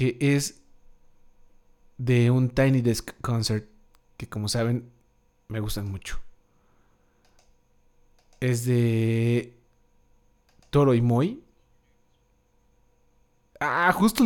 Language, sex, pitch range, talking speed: Spanish, male, 110-135 Hz, 85 wpm